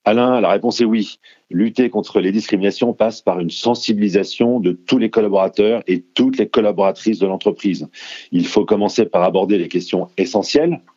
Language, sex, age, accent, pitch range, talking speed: French, male, 40-59, French, 100-135 Hz, 170 wpm